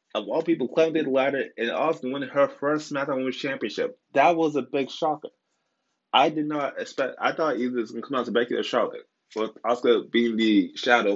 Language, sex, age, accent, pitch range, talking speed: English, male, 20-39, American, 110-155 Hz, 225 wpm